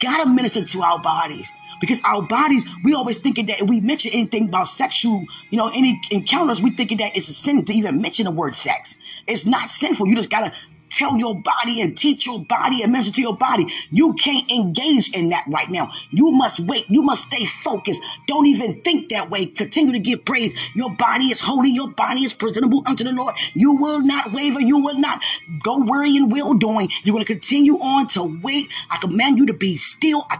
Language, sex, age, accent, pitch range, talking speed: English, female, 20-39, American, 190-265 Hz, 220 wpm